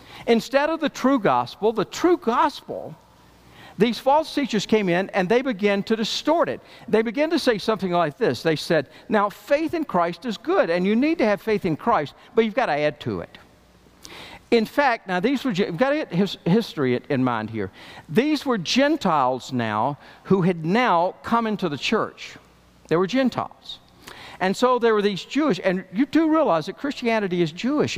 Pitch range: 160-250 Hz